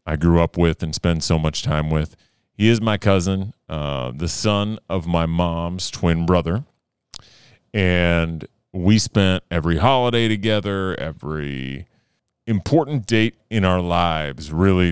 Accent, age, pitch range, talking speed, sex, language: American, 30-49, 80-105 Hz, 140 wpm, male, English